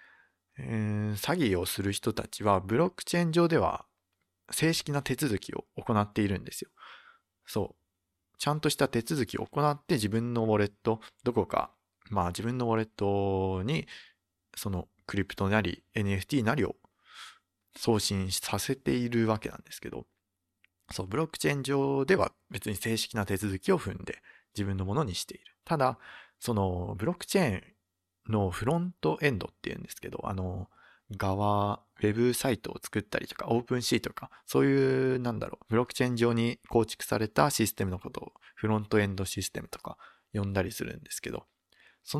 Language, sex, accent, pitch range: Japanese, male, native, 100-125 Hz